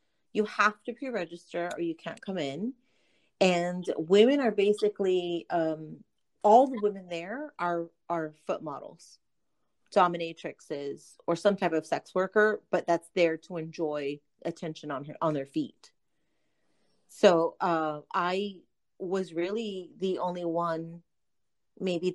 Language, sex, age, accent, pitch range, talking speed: English, female, 30-49, American, 165-205 Hz, 135 wpm